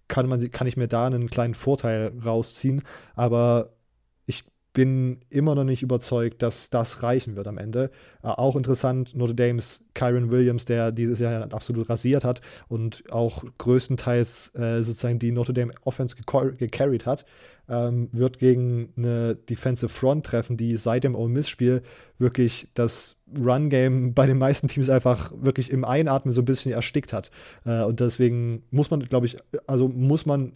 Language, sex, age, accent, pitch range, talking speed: German, male, 20-39, German, 120-135 Hz, 170 wpm